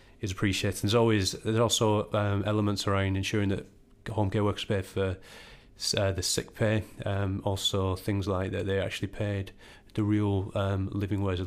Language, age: English, 30-49